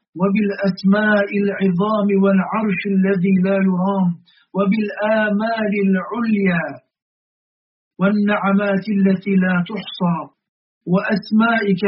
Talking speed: 65 wpm